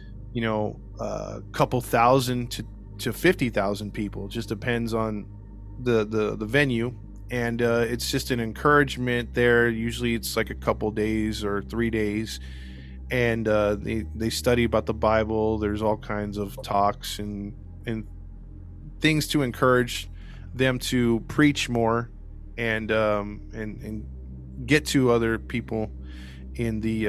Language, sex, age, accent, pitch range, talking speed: English, male, 20-39, American, 100-125 Hz, 150 wpm